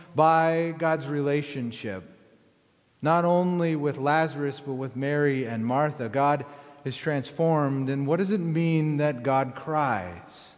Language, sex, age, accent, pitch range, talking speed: English, male, 30-49, American, 140-175 Hz, 130 wpm